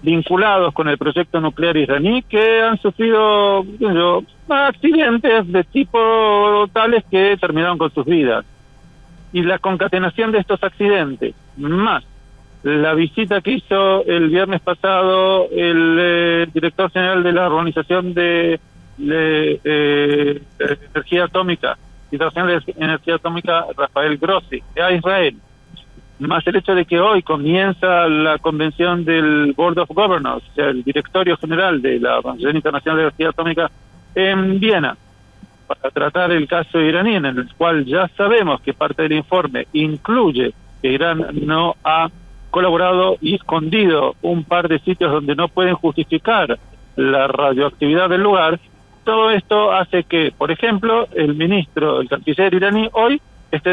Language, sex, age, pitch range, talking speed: Spanish, male, 50-69, 155-190 Hz, 135 wpm